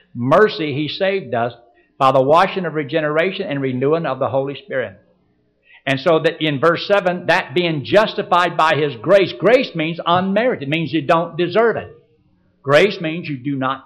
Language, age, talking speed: English, 60-79, 175 wpm